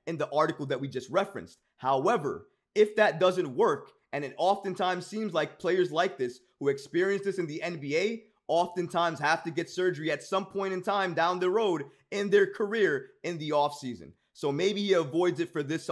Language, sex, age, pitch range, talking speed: English, male, 20-39, 165-205 Hz, 195 wpm